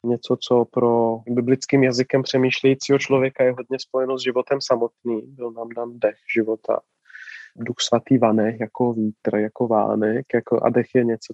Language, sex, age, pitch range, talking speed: Czech, male, 20-39, 115-130 Hz, 155 wpm